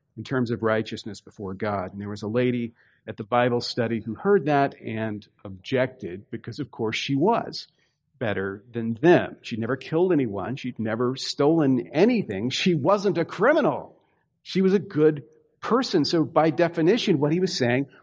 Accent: American